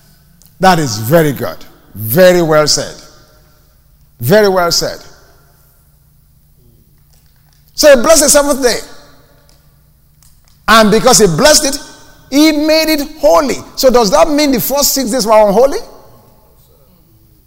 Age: 50-69